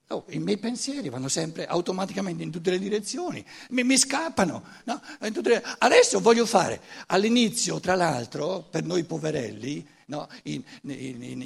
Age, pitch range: 60-79, 165-235 Hz